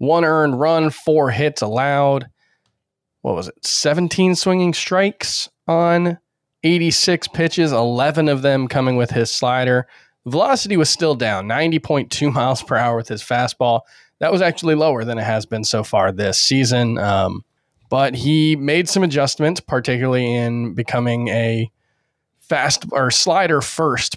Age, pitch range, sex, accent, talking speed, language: 20-39, 115-155 Hz, male, American, 145 wpm, English